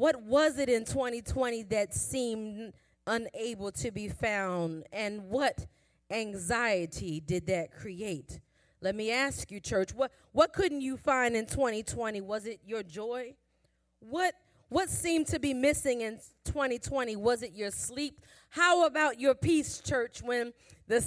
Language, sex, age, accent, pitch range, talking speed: English, female, 30-49, American, 220-280 Hz, 150 wpm